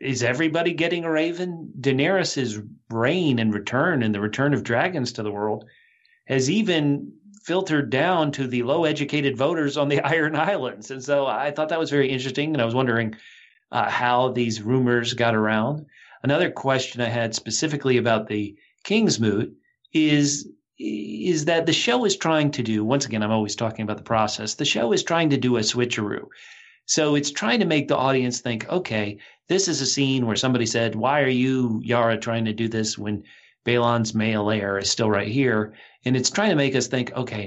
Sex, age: male, 40-59